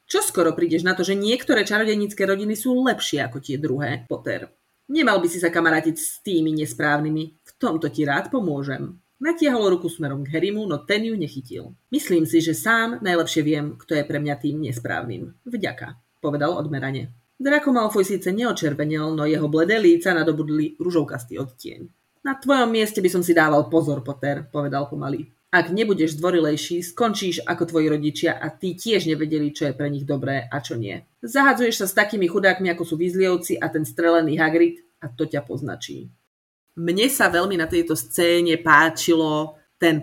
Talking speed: 175 wpm